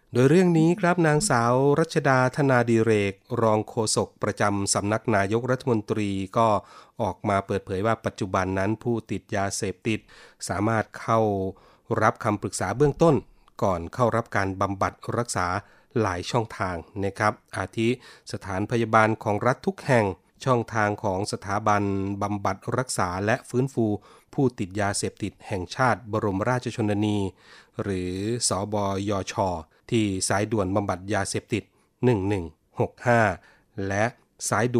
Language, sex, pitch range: Thai, male, 100-120 Hz